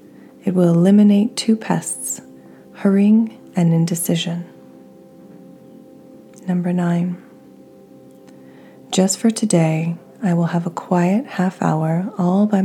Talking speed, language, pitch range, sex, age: 105 wpm, English, 165-190 Hz, female, 30-49